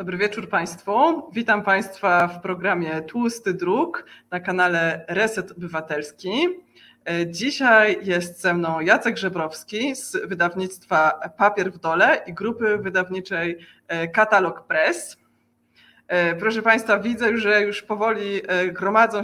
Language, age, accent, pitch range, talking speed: Polish, 20-39, native, 175-210 Hz, 110 wpm